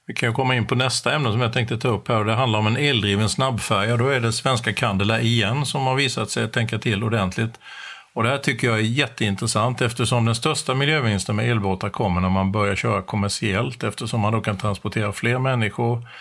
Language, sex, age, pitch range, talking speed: Swedish, male, 50-69, 105-125 Hz, 220 wpm